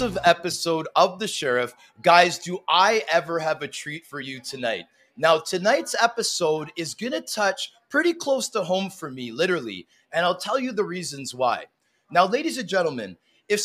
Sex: male